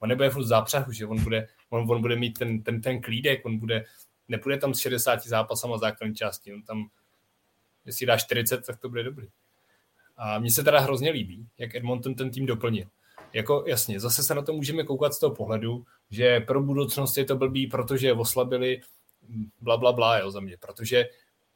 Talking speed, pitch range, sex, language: 195 wpm, 115-140 Hz, male, Czech